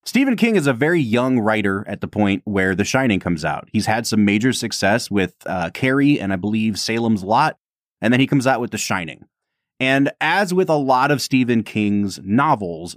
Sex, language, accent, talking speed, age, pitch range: male, English, American, 210 wpm, 30-49, 105-140 Hz